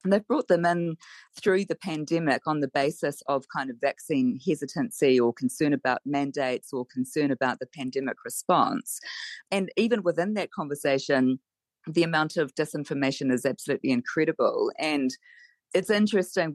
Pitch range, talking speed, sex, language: 140-175 Hz, 150 wpm, female, English